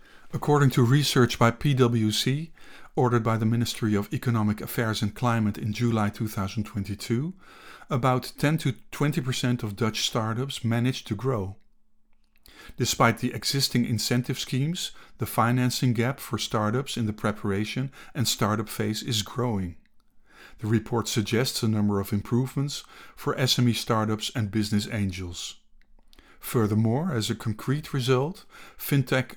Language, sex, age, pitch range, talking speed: English, male, 50-69, 110-130 Hz, 130 wpm